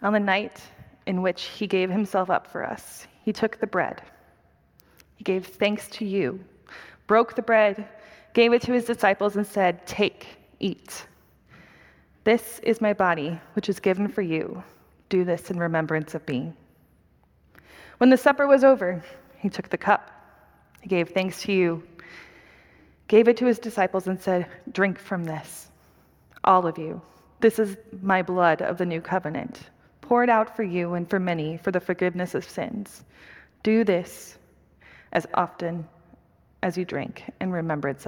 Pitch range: 170-210 Hz